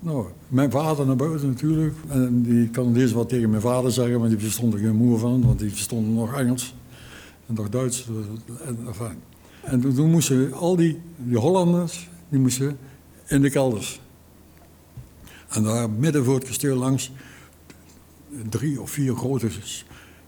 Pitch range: 110-135 Hz